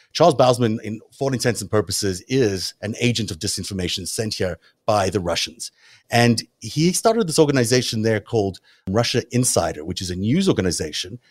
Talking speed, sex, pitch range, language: 170 wpm, male, 95-125 Hz, English